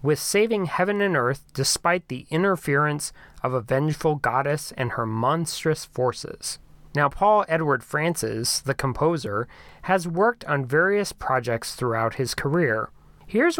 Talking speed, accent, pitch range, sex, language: 135 wpm, American, 130-165 Hz, male, English